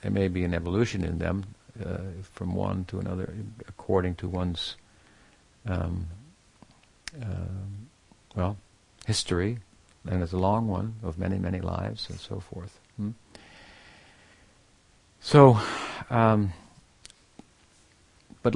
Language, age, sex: English, 60-79, male